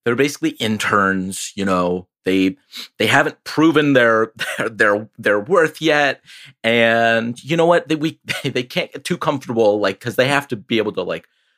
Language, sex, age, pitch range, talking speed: English, male, 30-49, 90-140 Hz, 180 wpm